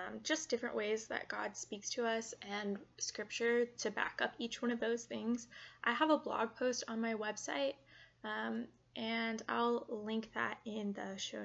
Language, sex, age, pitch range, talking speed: English, female, 20-39, 210-240 Hz, 180 wpm